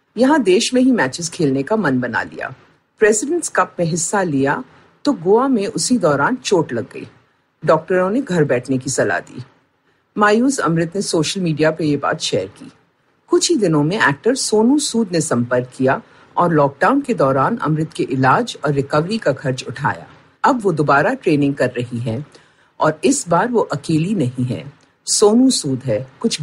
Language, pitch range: Hindi, 140-225 Hz